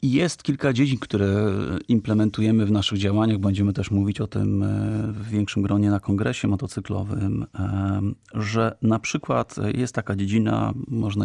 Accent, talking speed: native, 140 wpm